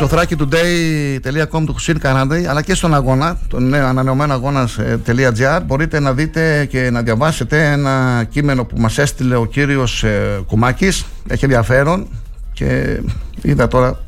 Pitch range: 115-145 Hz